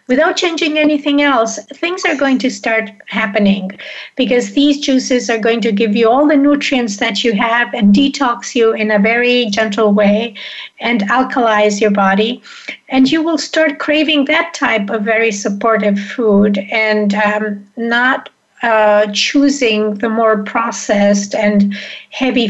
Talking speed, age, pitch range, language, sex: 150 wpm, 50-69, 210-255 Hz, English, female